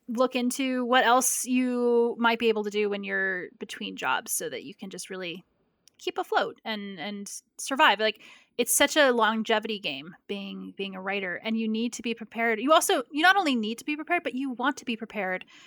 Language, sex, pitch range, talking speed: English, female, 205-260 Hz, 215 wpm